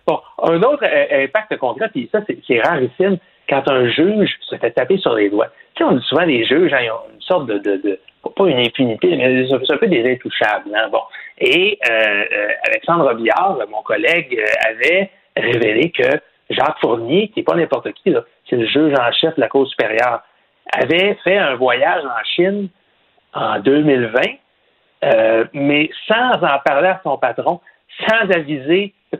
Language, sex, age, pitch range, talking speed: French, male, 60-79, 130-195 Hz, 195 wpm